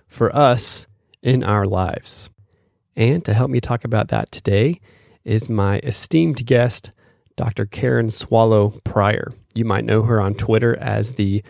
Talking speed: 150 wpm